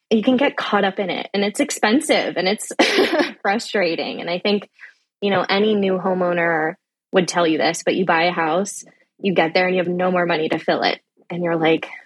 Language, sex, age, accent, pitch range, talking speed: English, female, 20-39, American, 175-210 Hz, 225 wpm